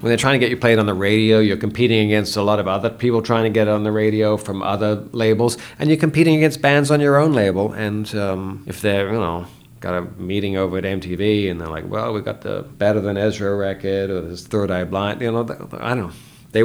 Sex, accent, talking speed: male, American, 265 wpm